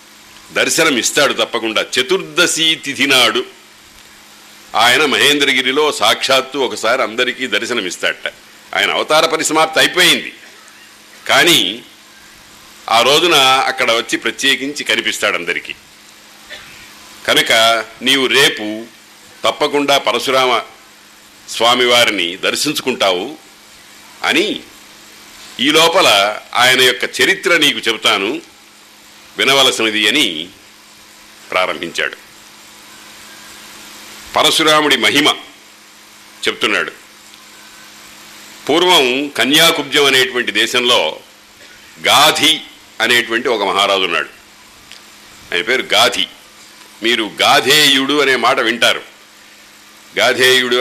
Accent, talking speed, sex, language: native, 75 wpm, male, Telugu